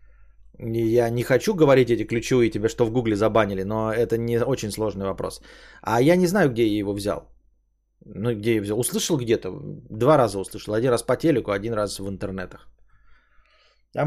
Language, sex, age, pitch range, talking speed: Bulgarian, male, 20-39, 115-180 Hz, 185 wpm